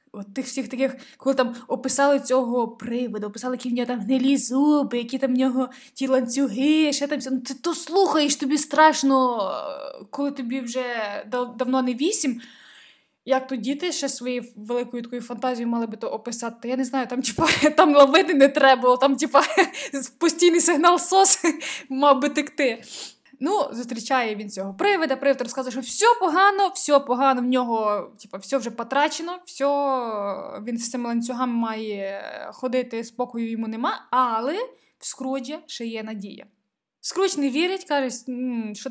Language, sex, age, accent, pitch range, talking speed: Ukrainian, female, 20-39, native, 235-285 Hz, 160 wpm